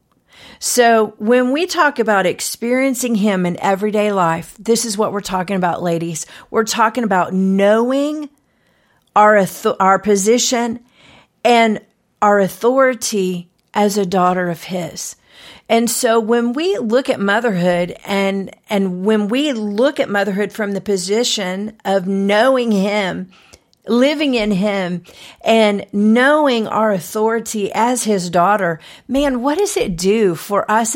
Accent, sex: American, female